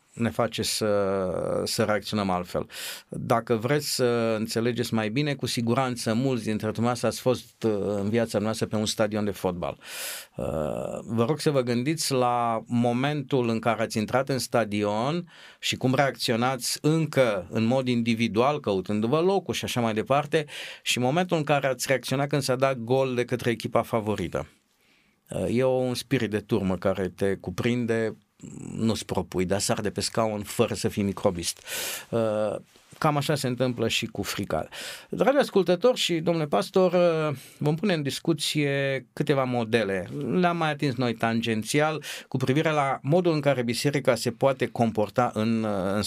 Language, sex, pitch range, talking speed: Romanian, male, 110-145 Hz, 155 wpm